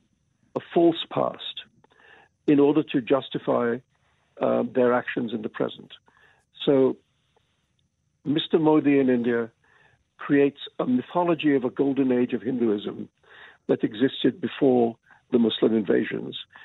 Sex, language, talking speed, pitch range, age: male, Hebrew, 115 wpm, 115-140 Hz, 50-69